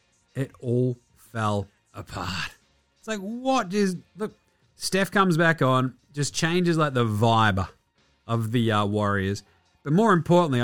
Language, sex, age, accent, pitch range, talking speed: English, male, 30-49, Australian, 120-190 Hz, 140 wpm